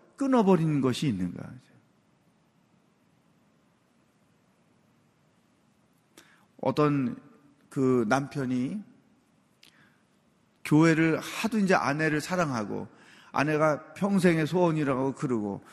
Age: 40-59